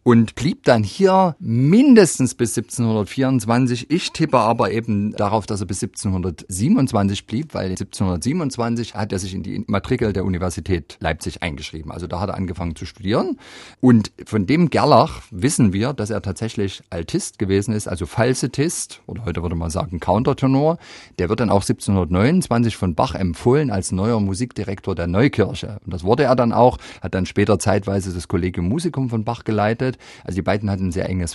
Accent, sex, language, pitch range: German, male, German, 95-120 Hz